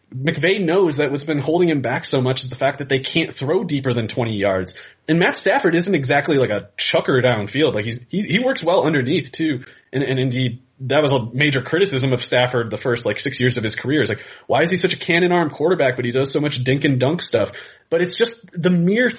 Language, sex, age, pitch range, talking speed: English, male, 30-49, 115-155 Hz, 250 wpm